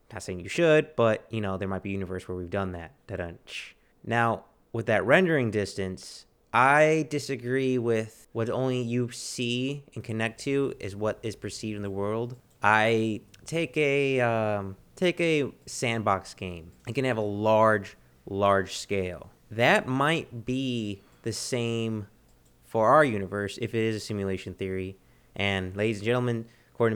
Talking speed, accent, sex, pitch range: 165 wpm, American, male, 100-125 Hz